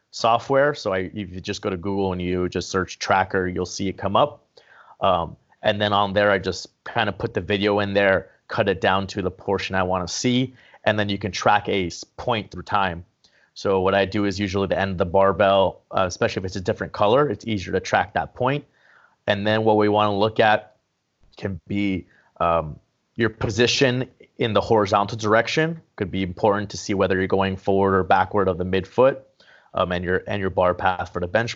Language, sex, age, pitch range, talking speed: English, male, 30-49, 95-105 Hz, 225 wpm